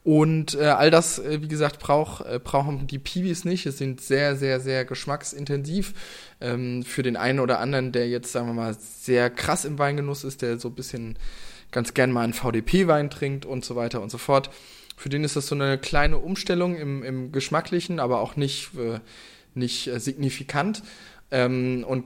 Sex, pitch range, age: male, 120-145 Hz, 20-39